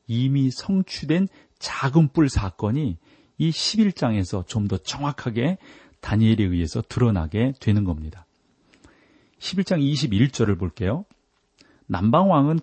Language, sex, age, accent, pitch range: Korean, male, 40-59, native, 105-145 Hz